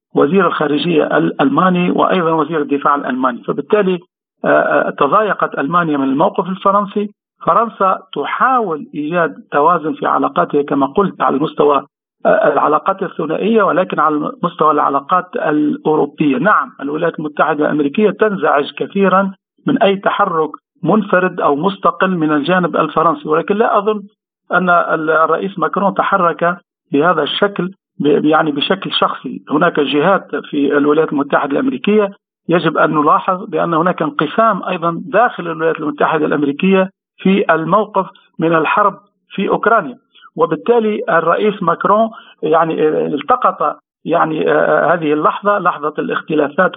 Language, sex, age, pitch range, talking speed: Arabic, male, 50-69, 155-205 Hz, 115 wpm